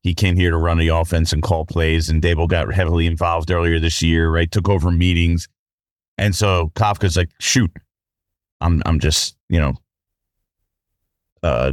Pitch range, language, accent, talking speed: 95-135 Hz, English, American, 170 wpm